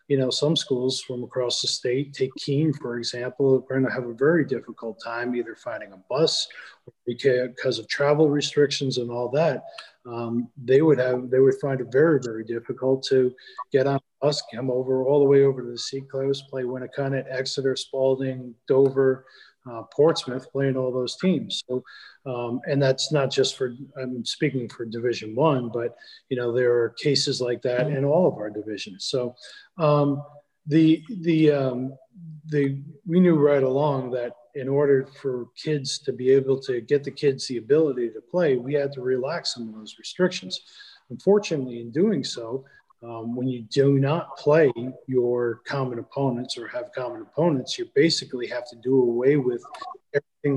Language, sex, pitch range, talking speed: English, male, 125-145 Hz, 180 wpm